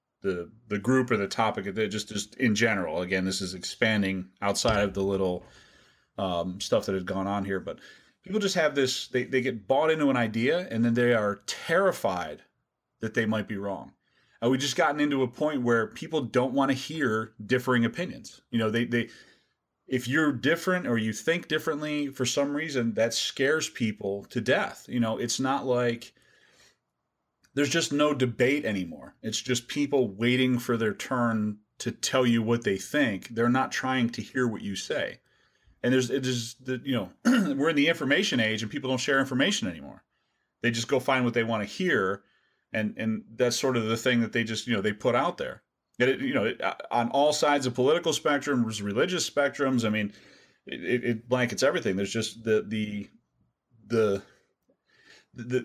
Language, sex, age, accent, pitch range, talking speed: English, male, 30-49, American, 110-130 Hz, 195 wpm